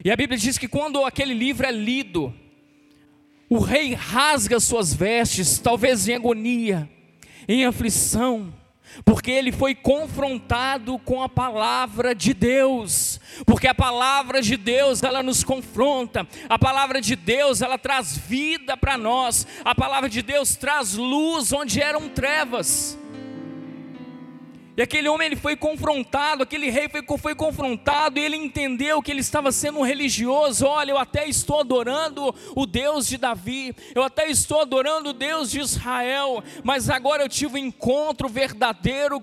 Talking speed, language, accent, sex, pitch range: 150 wpm, Portuguese, Brazilian, male, 250-285 Hz